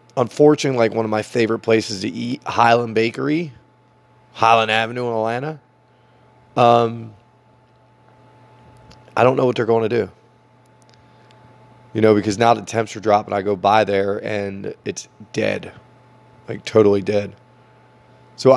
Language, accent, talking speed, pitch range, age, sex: English, American, 140 wpm, 105-125 Hz, 20-39, male